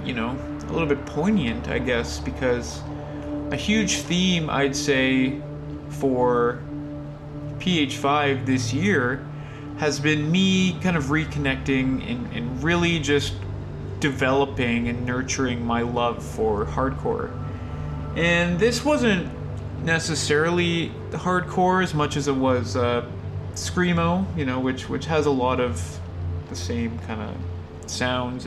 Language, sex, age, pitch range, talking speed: English, male, 30-49, 100-155 Hz, 125 wpm